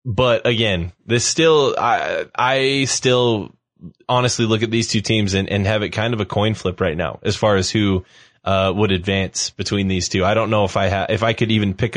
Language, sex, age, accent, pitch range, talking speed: English, male, 20-39, American, 105-140 Hz, 220 wpm